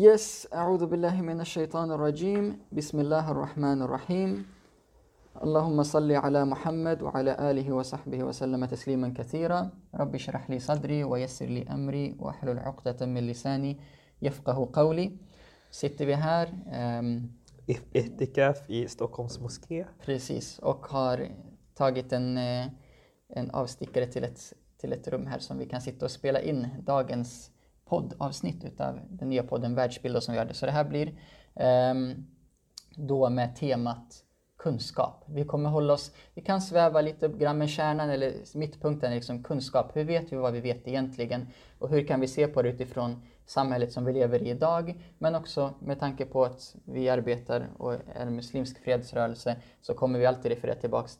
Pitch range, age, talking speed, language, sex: 125-150 Hz, 20-39, 160 wpm, Swedish, male